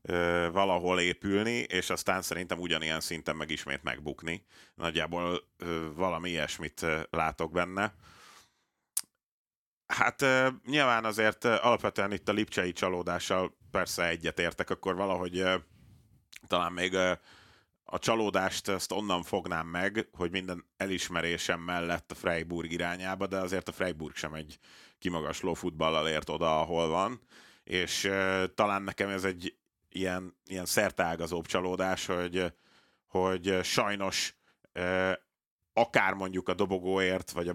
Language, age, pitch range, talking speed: Hungarian, 30-49, 85-95 Hz, 120 wpm